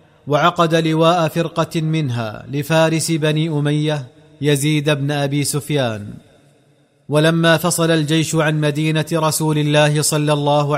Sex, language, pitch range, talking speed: male, Arabic, 145-165 Hz, 110 wpm